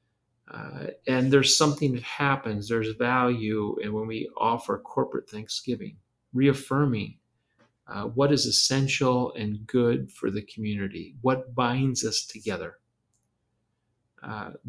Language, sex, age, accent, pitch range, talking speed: English, male, 40-59, American, 110-130 Hz, 120 wpm